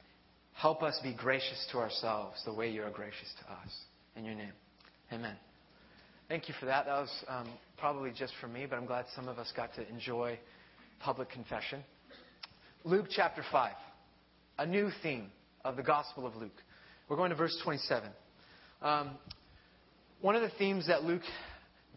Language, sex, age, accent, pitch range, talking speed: English, male, 30-49, American, 115-175 Hz, 170 wpm